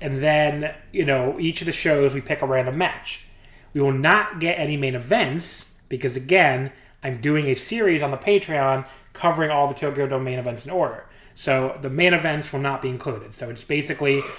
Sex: male